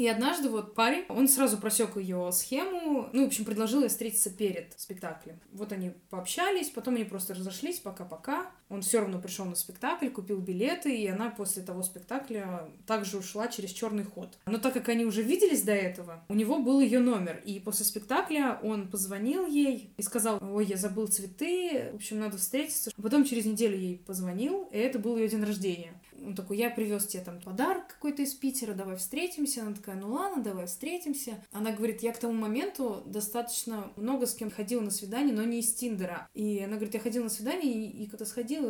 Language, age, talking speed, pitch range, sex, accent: Russian, 20-39, 200 wpm, 195-255 Hz, female, native